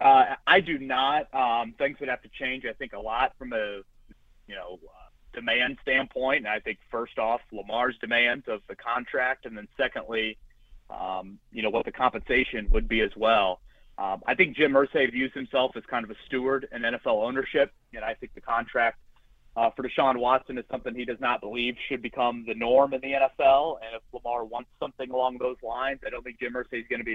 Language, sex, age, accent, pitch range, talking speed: English, male, 30-49, American, 115-130 Hz, 215 wpm